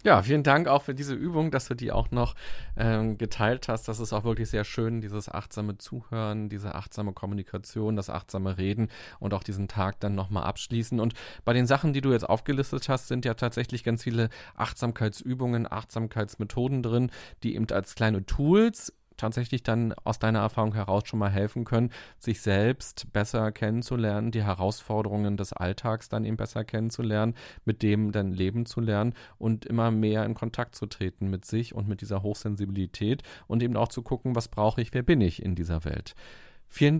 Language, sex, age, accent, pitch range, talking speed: German, male, 30-49, German, 105-120 Hz, 185 wpm